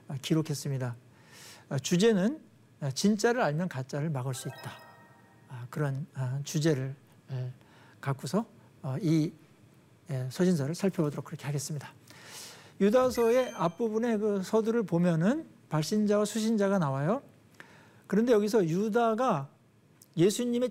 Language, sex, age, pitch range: Korean, male, 60-79, 145-215 Hz